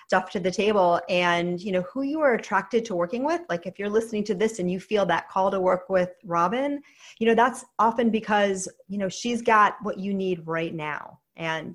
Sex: female